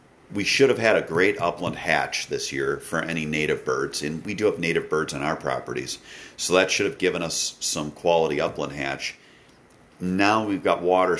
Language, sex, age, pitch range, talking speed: English, male, 40-59, 75-95 Hz, 200 wpm